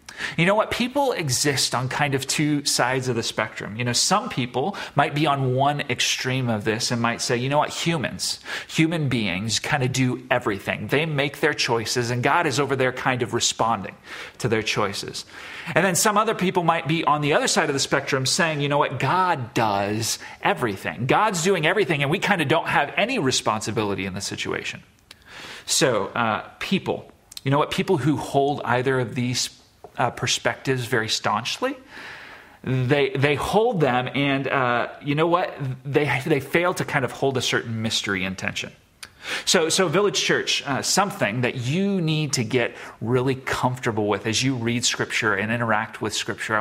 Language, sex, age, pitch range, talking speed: English, male, 40-59, 120-150 Hz, 185 wpm